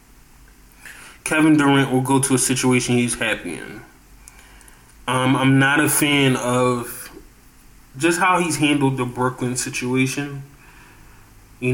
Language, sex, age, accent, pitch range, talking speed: English, male, 20-39, American, 125-135 Hz, 125 wpm